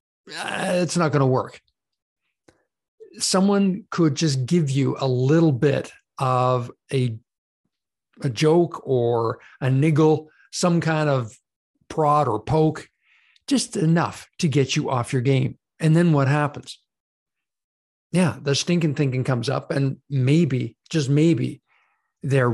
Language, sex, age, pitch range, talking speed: English, male, 50-69, 130-165 Hz, 130 wpm